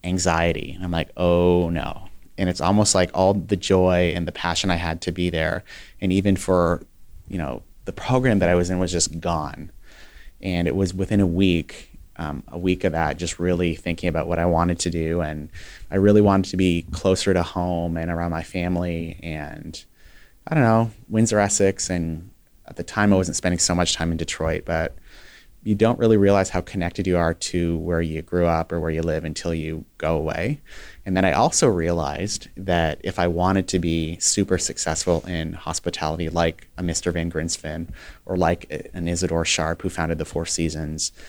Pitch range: 80-95 Hz